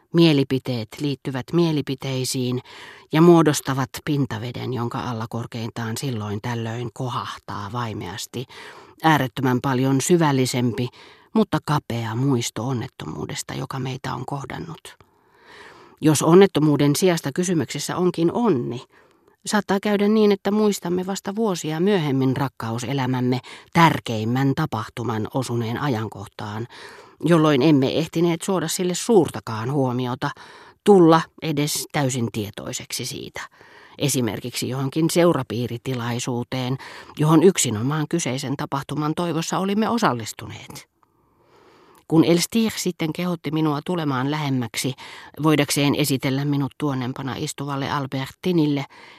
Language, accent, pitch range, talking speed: Finnish, native, 125-165 Hz, 95 wpm